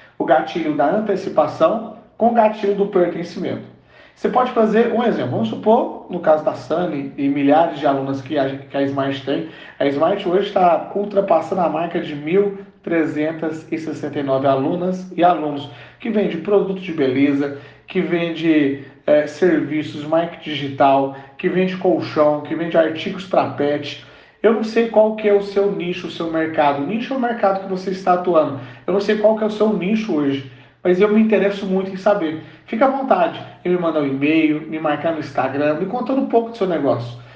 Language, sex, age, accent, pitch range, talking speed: Portuguese, male, 40-59, Brazilian, 150-210 Hz, 190 wpm